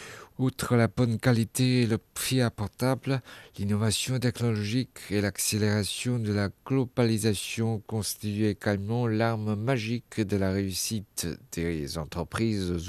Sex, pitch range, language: male, 100-125 Hz, French